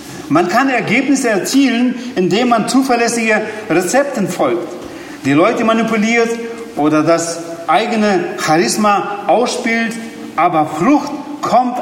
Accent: German